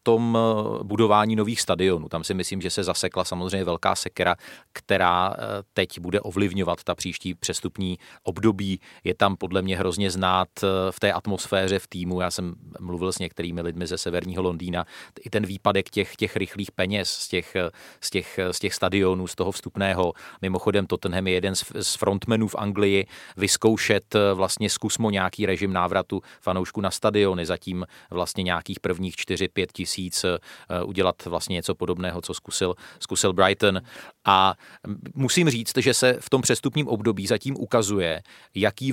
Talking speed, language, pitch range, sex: 155 wpm, Czech, 90-105 Hz, male